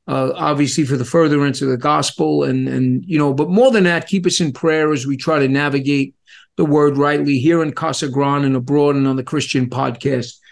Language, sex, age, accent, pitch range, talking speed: English, male, 50-69, American, 155-195 Hz, 215 wpm